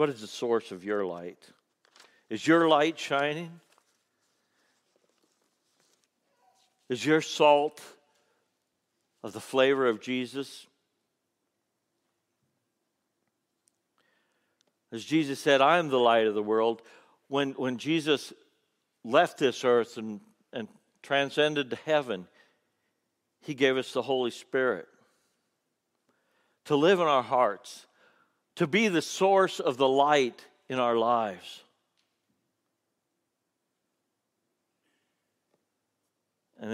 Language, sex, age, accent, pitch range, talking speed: English, male, 60-79, American, 115-150 Hz, 100 wpm